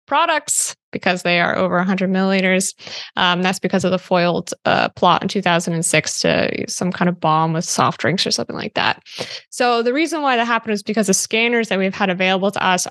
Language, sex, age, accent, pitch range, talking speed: English, female, 10-29, American, 180-205 Hz, 210 wpm